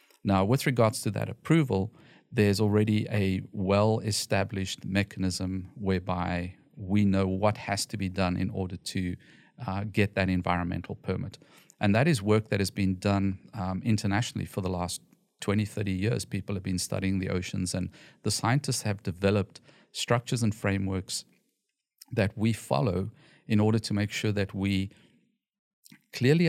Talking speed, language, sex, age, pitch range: 155 wpm, English, male, 40-59, 95-115 Hz